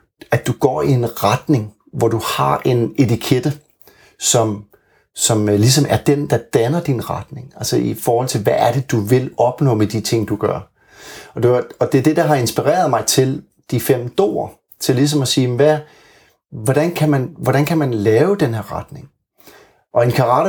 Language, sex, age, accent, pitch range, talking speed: Danish, male, 30-49, native, 115-150 Hz, 195 wpm